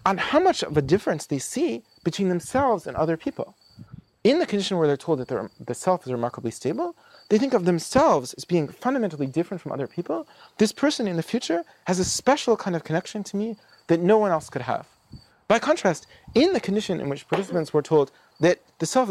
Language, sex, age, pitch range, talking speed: English, male, 30-49, 155-215 Hz, 215 wpm